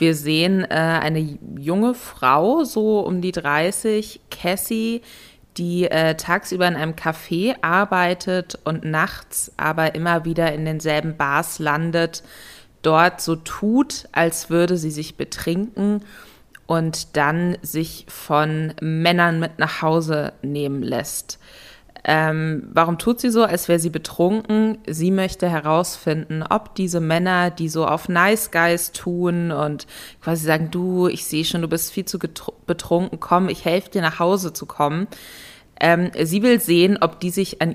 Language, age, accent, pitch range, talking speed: German, 20-39, German, 155-185 Hz, 150 wpm